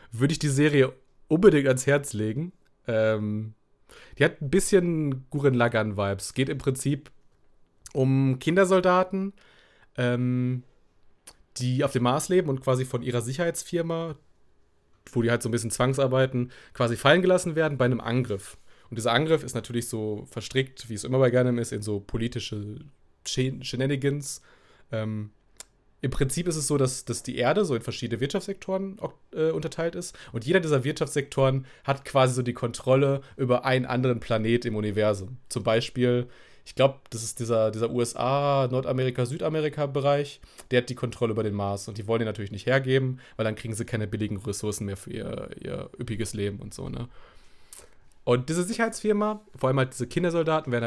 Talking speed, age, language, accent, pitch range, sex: 170 wpm, 30-49, German, German, 115-140 Hz, male